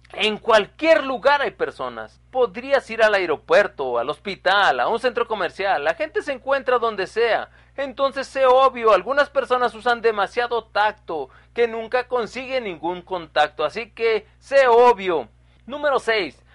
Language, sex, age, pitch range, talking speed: Spanish, male, 40-59, 205-270 Hz, 145 wpm